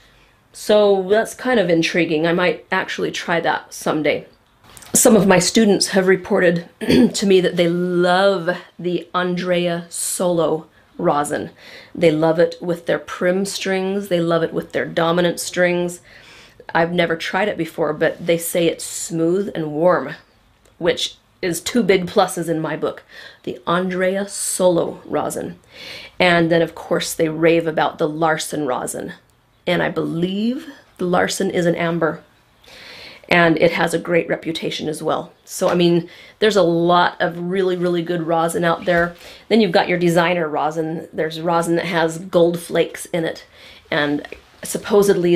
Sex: female